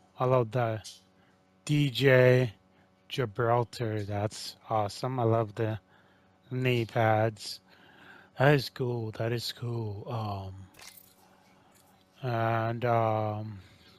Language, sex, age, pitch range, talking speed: English, male, 30-49, 95-130 Hz, 90 wpm